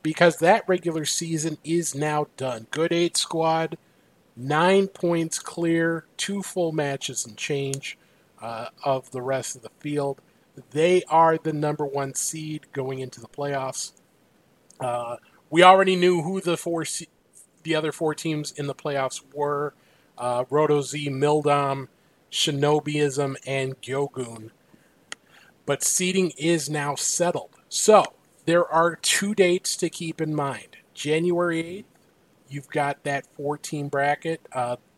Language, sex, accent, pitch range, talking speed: English, male, American, 135-165 Hz, 140 wpm